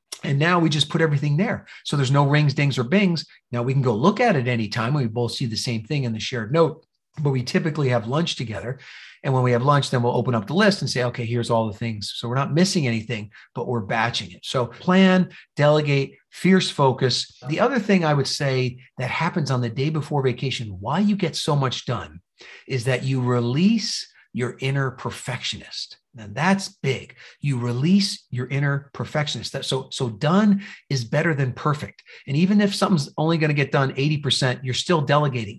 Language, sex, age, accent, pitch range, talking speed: English, male, 40-59, American, 125-160 Hz, 210 wpm